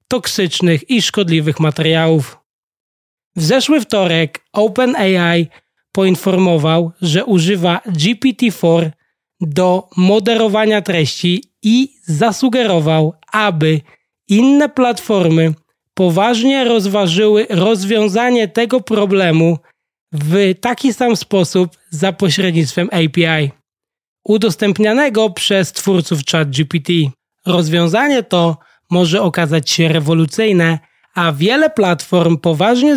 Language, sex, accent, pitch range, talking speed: Polish, male, native, 165-210 Hz, 85 wpm